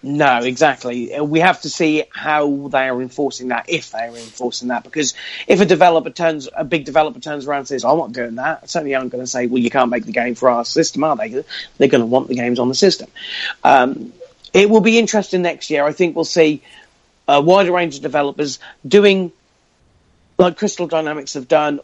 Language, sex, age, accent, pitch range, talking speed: English, male, 40-59, British, 125-165 Hz, 210 wpm